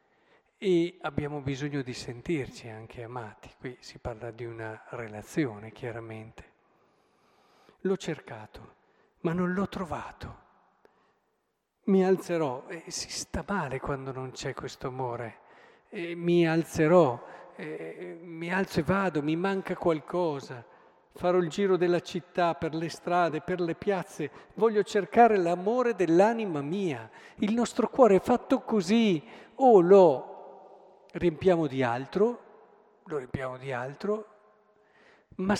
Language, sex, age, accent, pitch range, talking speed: Italian, male, 50-69, native, 130-185 Hz, 125 wpm